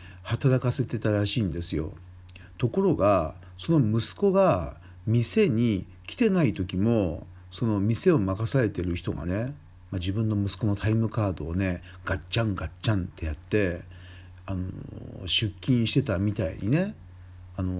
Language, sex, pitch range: Japanese, male, 90-115 Hz